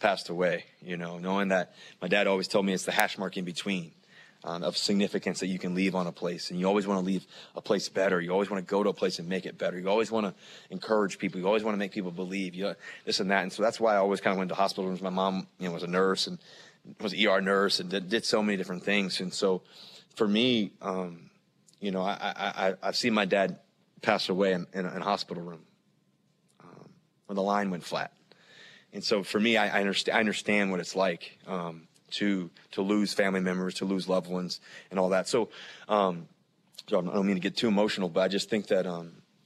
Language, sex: English, male